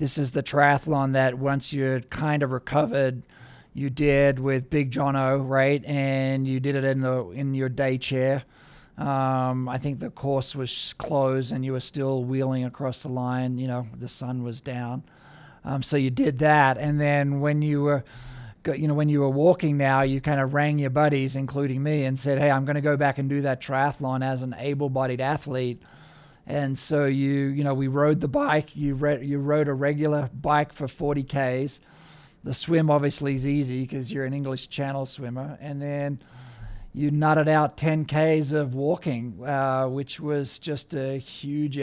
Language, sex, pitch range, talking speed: English, male, 130-145 Hz, 190 wpm